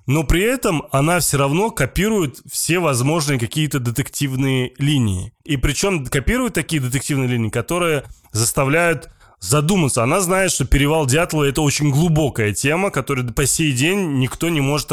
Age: 20-39